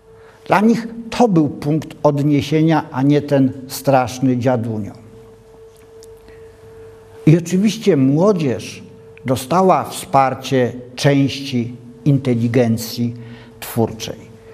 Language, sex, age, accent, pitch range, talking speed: Polish, male, 50-69, native, 115-160 Hz, 80 wpm